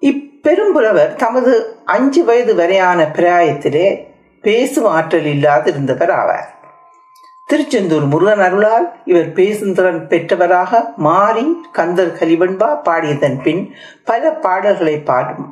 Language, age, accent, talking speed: Tamil, 60-79, native, 90 wpm